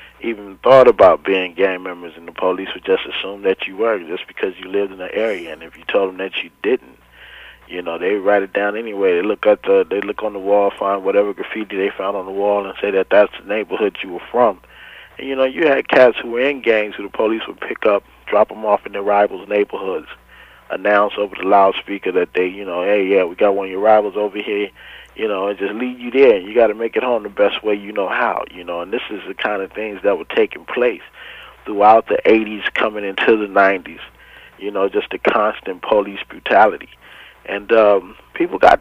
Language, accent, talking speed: English, American, 240 wpm